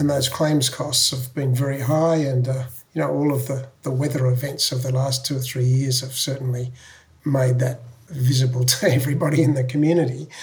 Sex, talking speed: male, 200 wpm